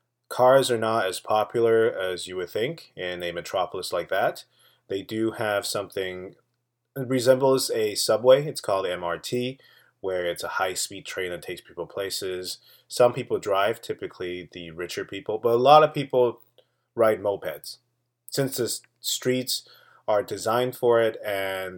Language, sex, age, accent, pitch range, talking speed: English, male, 30-49, American, 100-130 Hz, 155 wpm